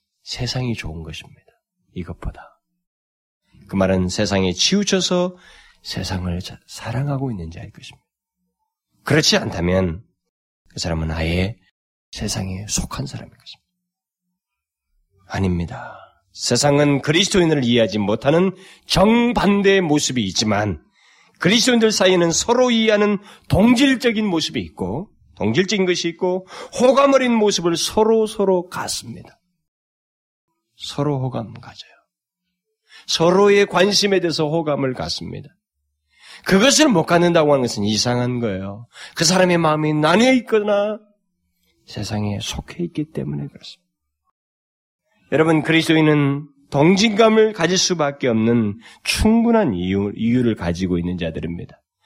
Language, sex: Korean, male